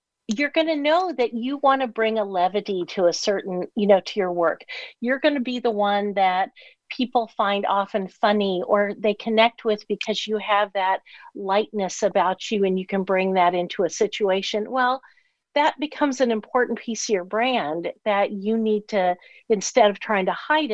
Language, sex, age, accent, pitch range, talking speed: English, female, 50-69, American, 200-245 Hz, 195 wpm